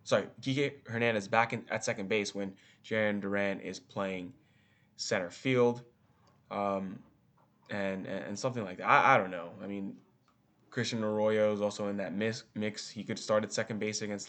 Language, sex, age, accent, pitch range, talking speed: English, male, 10-29, American, 100-120 Hz, 180 wpm